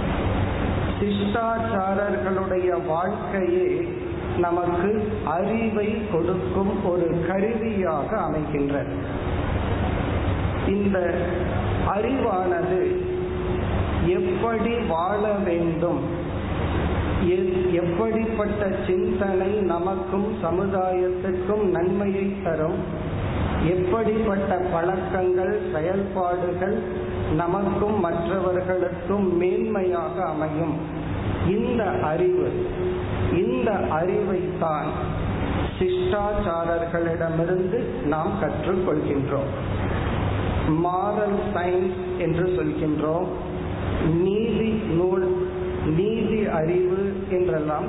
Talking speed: 40 wpm